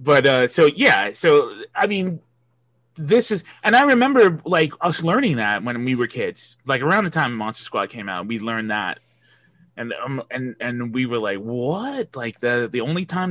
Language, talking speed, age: English, 200 wpm, 20-39